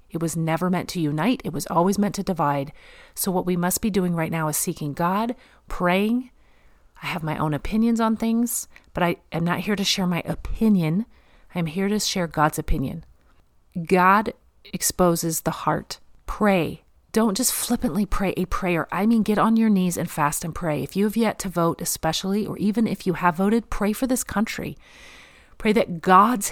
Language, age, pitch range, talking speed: English, 30-49, 170-220 Hz, 195 wpm